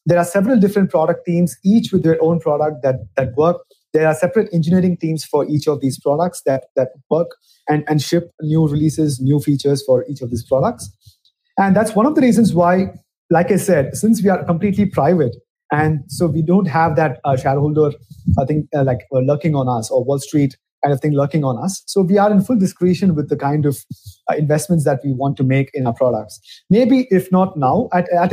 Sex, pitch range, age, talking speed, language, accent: male, 140-180 Hz, 30-49, 220 wpm, English, Indian